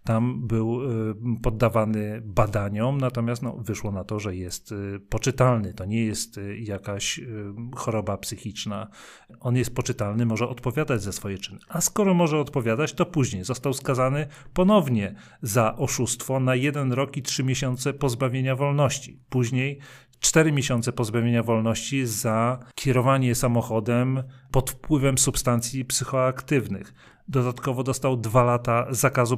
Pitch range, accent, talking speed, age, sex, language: 115-135 Hz, native, 125 wpm, 40-59, male, Polish